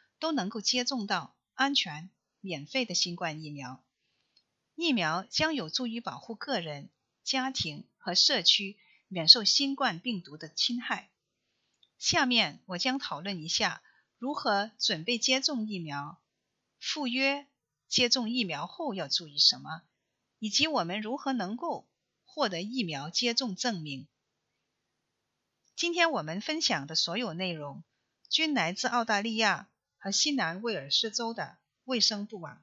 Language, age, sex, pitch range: English, 50-69, female, 175-260 Hz